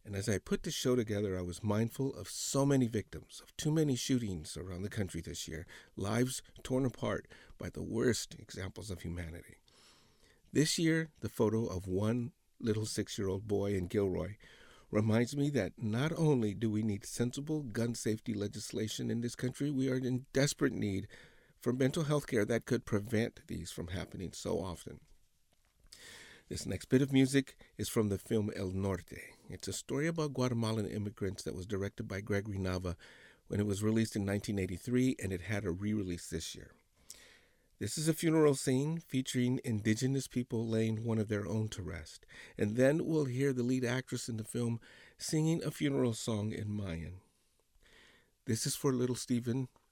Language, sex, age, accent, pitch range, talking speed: English, male, 50-69, American, 100-130 Hz, 180 wpm